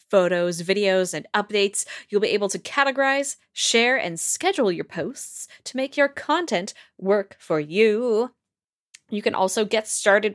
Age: 20-39